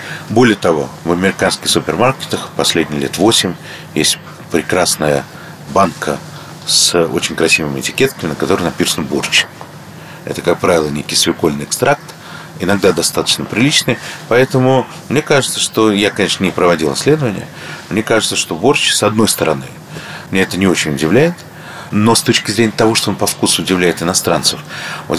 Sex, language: male, Russian